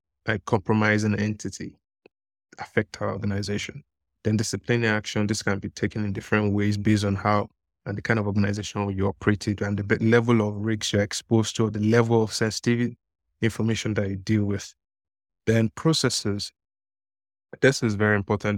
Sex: male